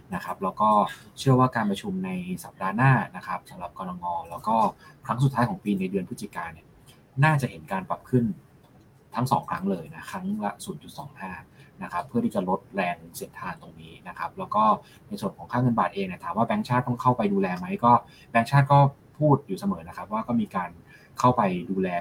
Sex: male